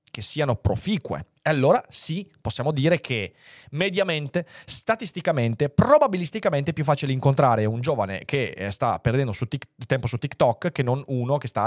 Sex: male